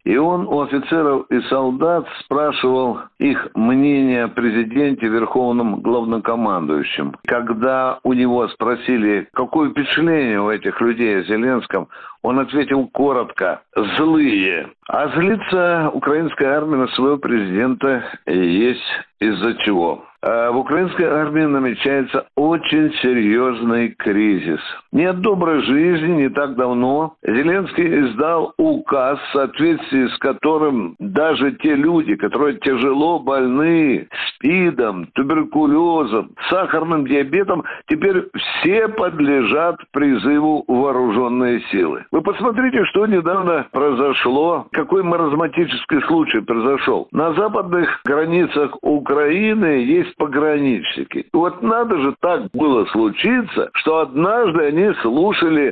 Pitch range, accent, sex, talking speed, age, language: 130-205 Hz, native, male, 105 wpm, 60-79, Russian